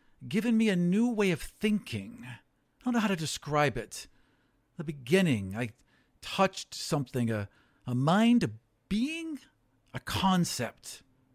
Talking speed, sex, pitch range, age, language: 135 wpm, male, 125-205 Hz, 50-69, English